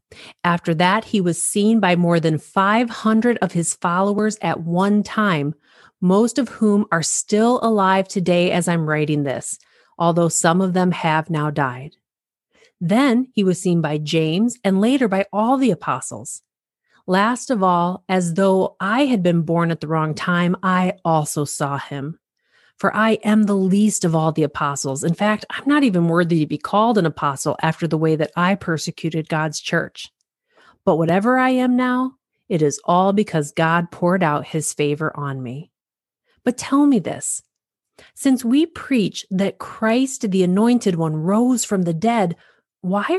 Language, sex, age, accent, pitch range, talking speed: English, female, 40-59, American, 165-220 Hz, 170 wpm